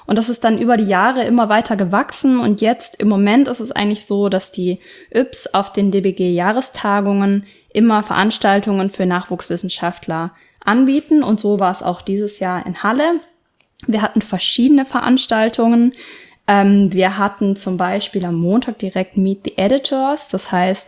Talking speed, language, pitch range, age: 160 wpm, German, 195-240 Hz, 10-29